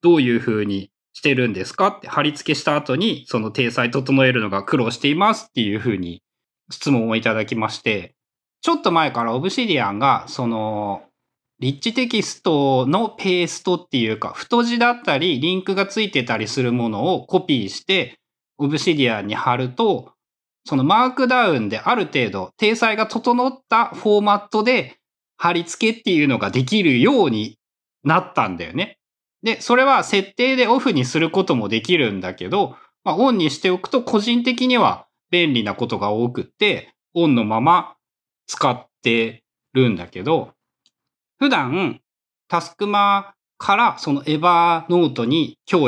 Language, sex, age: Japanese, male, 20-39